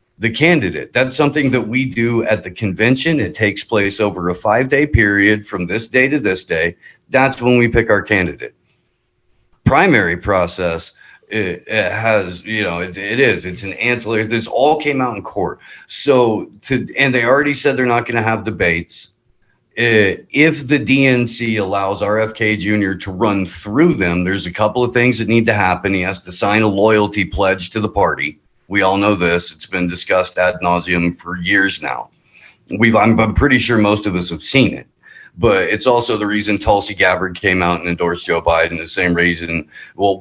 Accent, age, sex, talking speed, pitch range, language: American, 50-69, male, 195 wpm, 90-115 Hz, English